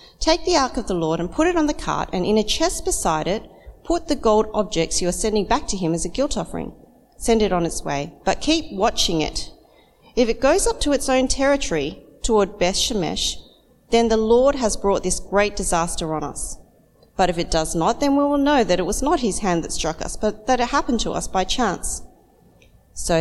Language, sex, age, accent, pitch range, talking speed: English, female, 40-59, Australian, 180-265 Hz, 230 wpm